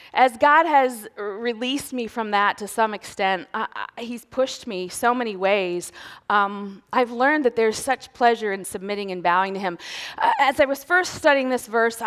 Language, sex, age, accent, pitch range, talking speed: English, female, 30-49, American, 205-270 Hz, 185 wpm